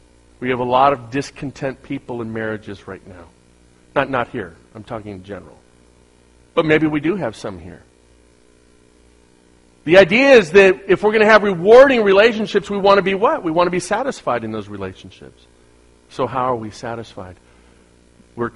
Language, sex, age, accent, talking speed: English, male, 50-69, American, 180 wpm